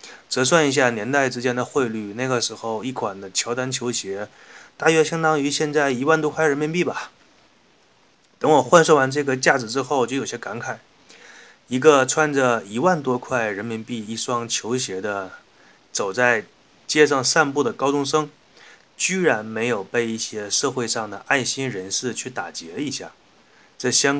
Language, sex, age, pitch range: Chinese, male, 20-39, 115-145 Hz